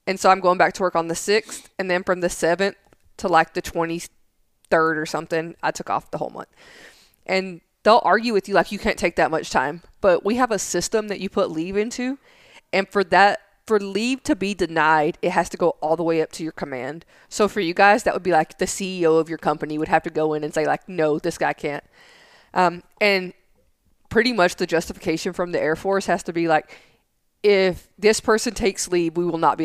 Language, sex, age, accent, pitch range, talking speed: English, female, 20-39, American, 165-210 Hz, 235 wpm